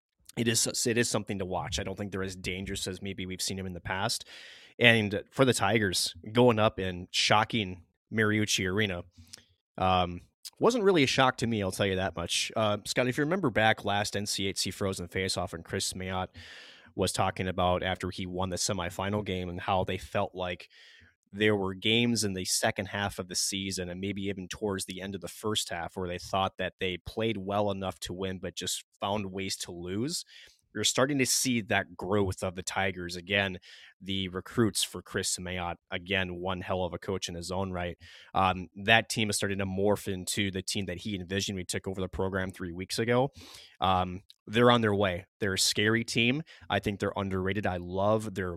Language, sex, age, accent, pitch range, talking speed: English, male, 20-39, American, 95-110 Hz, 210 wpm